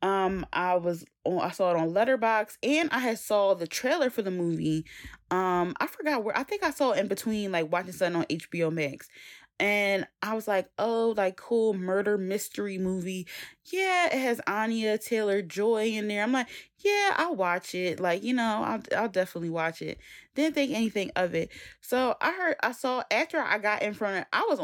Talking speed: 205 wpm